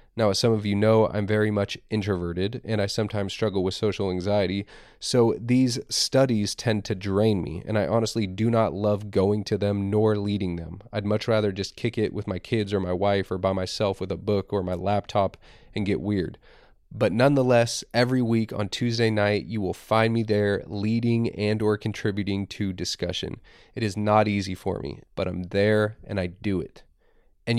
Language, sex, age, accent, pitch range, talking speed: English, male, 20-39, American, 100-115 Hz, 200 wpm